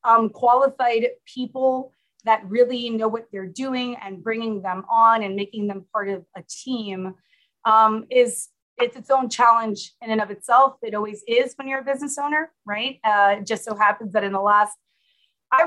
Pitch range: 205-250 Hz